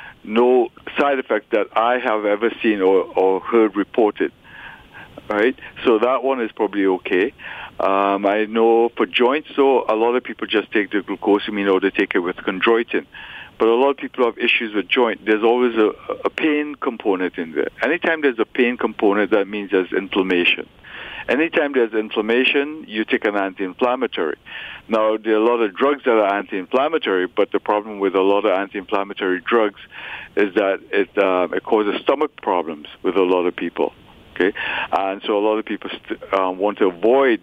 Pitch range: 100-120 Hz